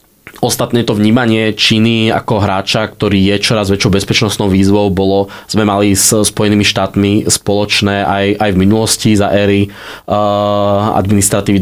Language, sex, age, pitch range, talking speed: Slovak, male, 20-39, 100-110 Hz, 140 wpm